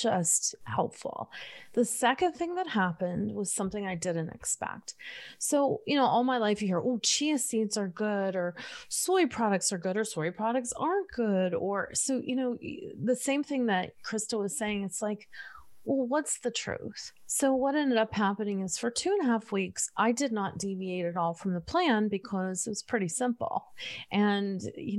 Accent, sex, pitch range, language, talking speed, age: American, female, 190-245 Hz, English, 190 wpm, 30-49